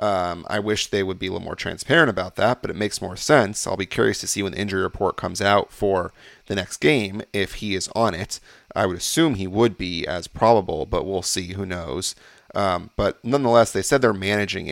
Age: 30-49